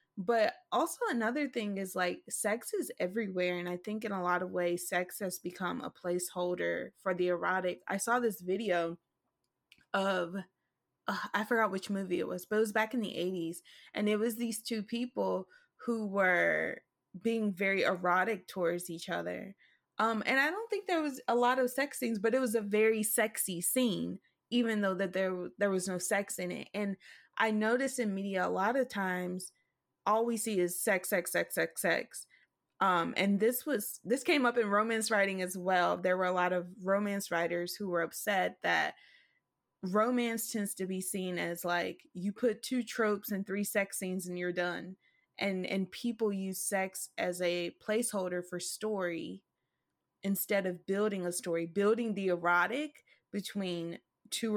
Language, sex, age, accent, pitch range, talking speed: English, female, 20-39, American, 180-225 Hz, 185 wpm